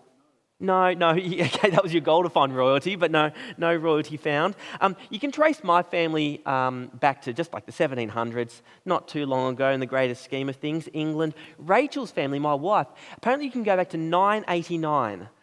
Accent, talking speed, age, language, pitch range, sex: Australian, 195 wpm, 30-49, English, 145-190 Hz, male